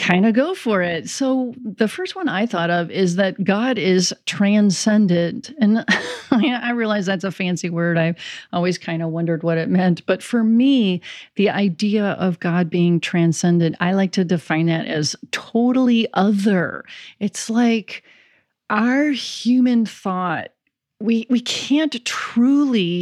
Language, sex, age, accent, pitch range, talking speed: English, female, 40-59, American, 185-245 Hz, 150 wpm